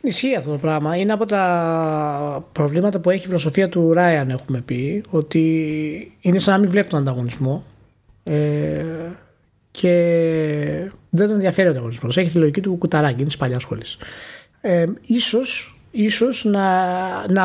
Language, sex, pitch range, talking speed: Greek, male, 145-200 Hz, 150 wpm